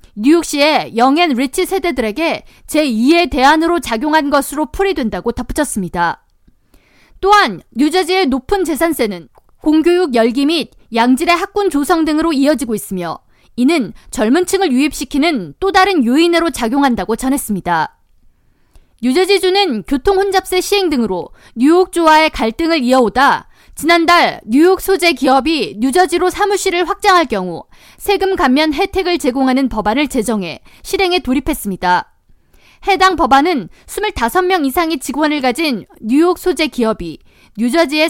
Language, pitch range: Korean, 250-350 Hz